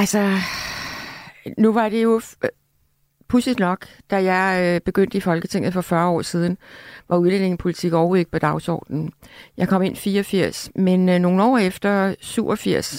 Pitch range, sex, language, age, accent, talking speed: 180-215 Hz, female, Danish, 60-79, native, 150 wpm